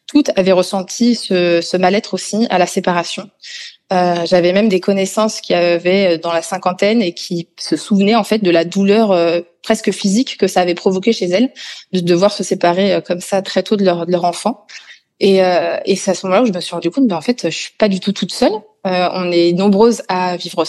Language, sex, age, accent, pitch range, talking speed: French, female, 20-39, French, 180-220 Hz, 230 wpm